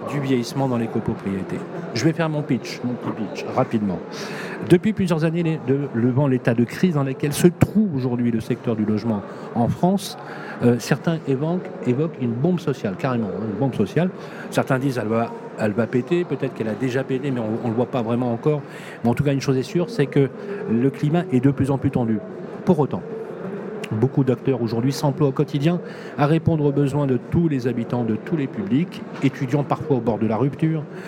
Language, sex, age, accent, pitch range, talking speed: French, male, 40-59, French, 120-165 Hz, 215 wpm